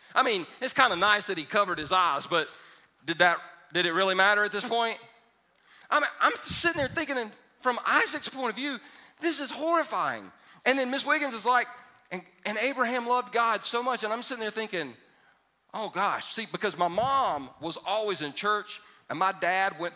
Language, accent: English, American